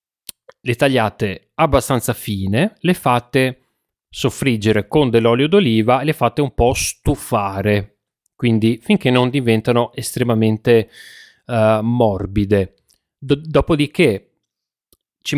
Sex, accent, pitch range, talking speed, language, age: male, native, 110-145 Hz, 95 wpm, Italian, 30-49